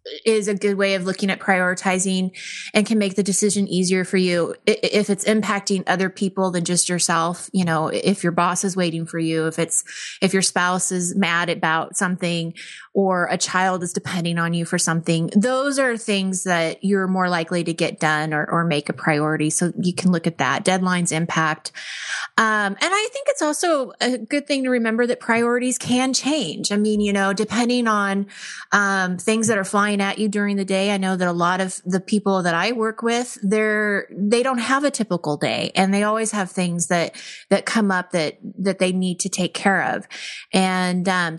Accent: American